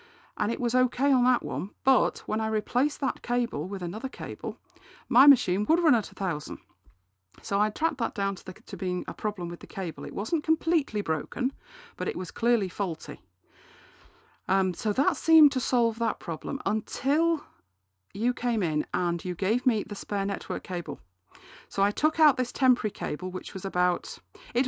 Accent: British